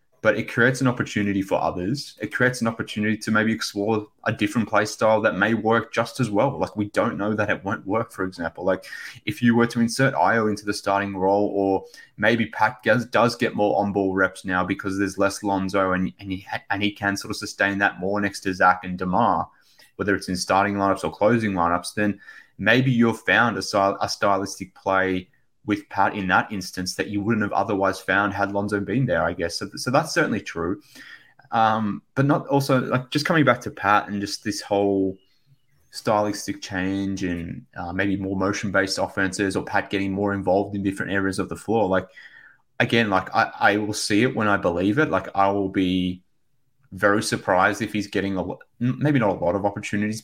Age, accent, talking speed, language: 20-39, Australian, 210 wpm, English